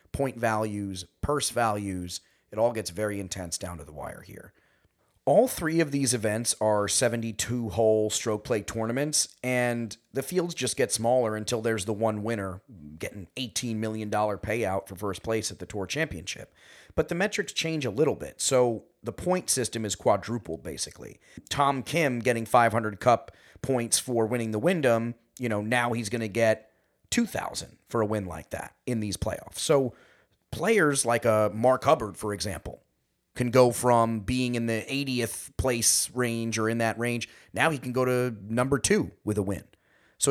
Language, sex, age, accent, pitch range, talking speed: English, male, 30-49, American, 110-125 Hz, 175 wpm